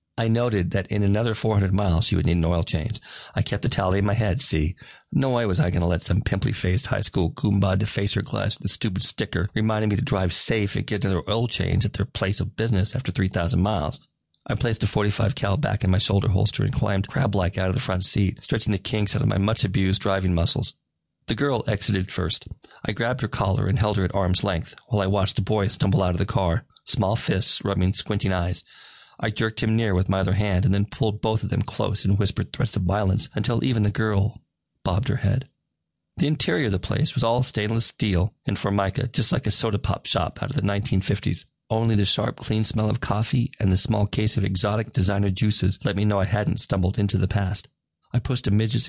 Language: English